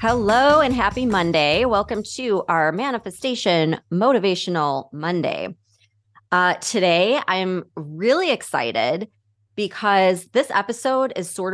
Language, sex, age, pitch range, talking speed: English, female, 20-39, 150-195 Hz, 105 wpm